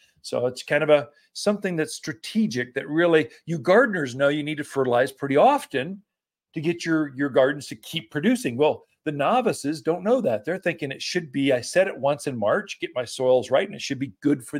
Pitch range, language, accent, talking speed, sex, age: 140-210 Hz, English, American, 220 wpm, male, 50-69